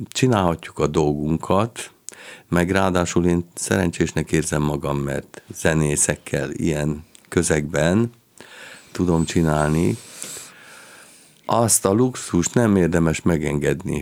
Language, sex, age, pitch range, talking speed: Hungarian, male, 50-69, 75-100 Hz, 90 wpm